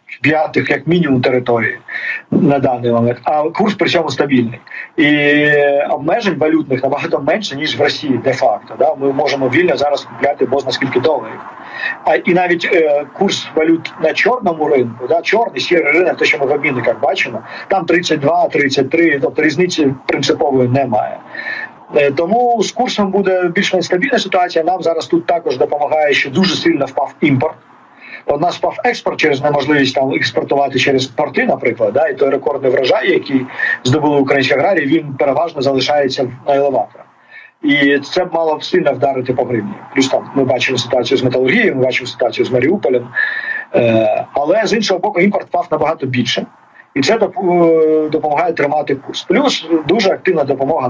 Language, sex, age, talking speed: Ukrainian, male, 40-59, 155 wpm